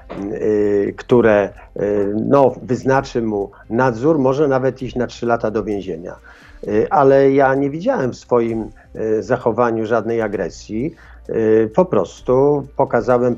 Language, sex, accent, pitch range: Polish, male, native, 110-135 Hz